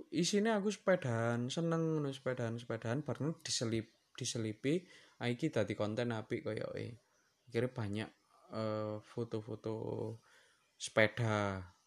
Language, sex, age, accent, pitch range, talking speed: Indonesian, male, 20-39, native, 110-145 Hz, 85 wpm